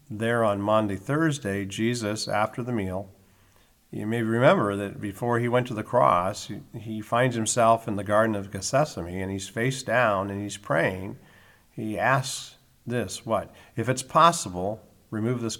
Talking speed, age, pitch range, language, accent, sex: 165 wpm, 50-69, 100-120 Hz, English, American, male